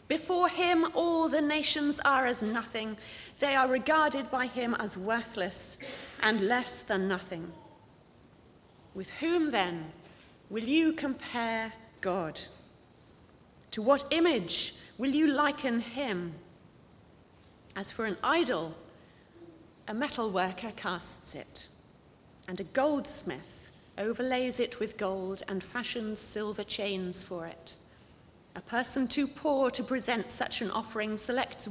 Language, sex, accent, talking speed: English, female, British, 125 wpm